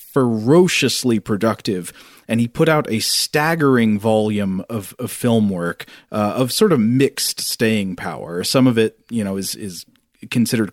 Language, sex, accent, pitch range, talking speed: English, male, American, 105-125 Hz, 155 wpm